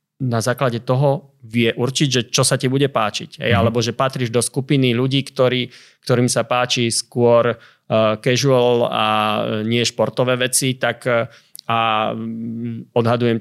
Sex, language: male, Slovak